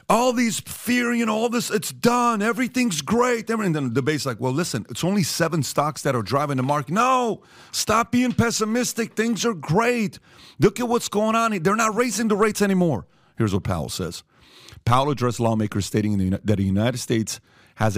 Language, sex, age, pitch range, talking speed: English, male, 40-59, 120-170 Hz, 190 wpm